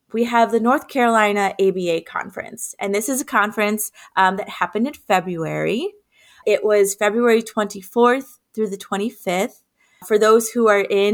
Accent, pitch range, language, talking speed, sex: American, 190-230 Hz, English, 155 wpm, female